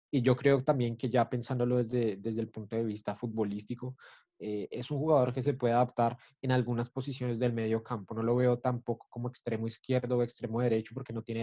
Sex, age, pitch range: male, 20-39, 115-130 Hz